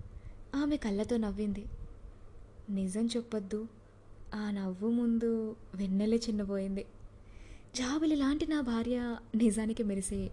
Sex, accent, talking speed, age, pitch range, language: female, native, 95 wpm, 20-39, 180-235 Hz, Telugu